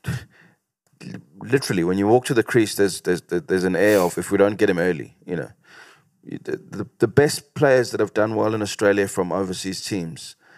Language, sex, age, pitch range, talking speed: English, male, 30-49, 95-125 Hz, 200 wpm